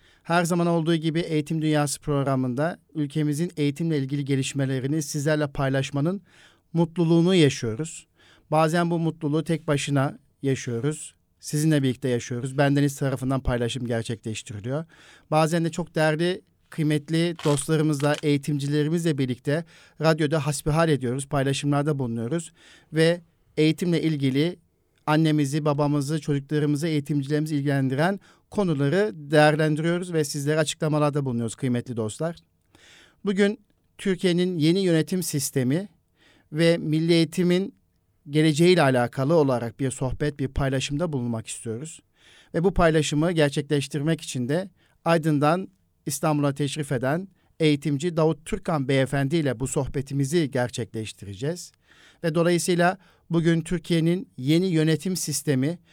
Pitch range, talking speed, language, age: 140-165 Hz, 105 wpm, Turkish, 50-69